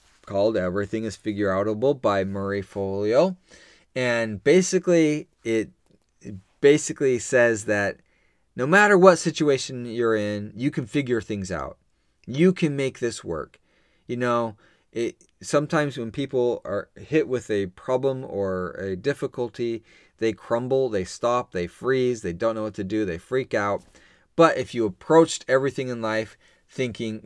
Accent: American